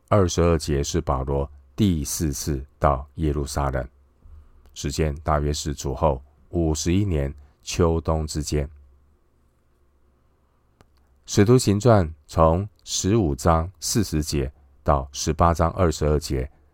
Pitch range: 70-80 Hz